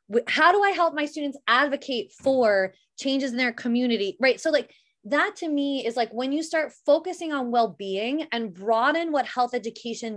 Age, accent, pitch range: 20-39, American, 215-290 Hz